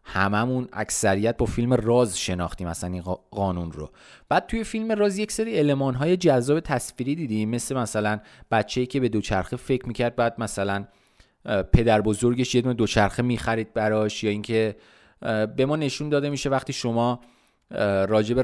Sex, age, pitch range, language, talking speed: male, 30-49, 105-135 Hz, Persian, 155 wpm